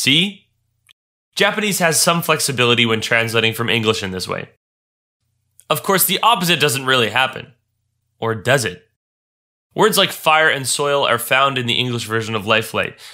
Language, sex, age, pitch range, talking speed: English, male, 20-39, 115-150 Hz, 160 wpm